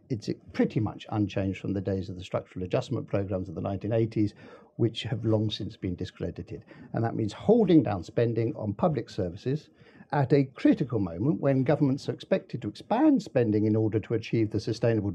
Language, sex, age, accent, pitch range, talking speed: English, male, 60-79, British, 110-155 Hz, 185 wpm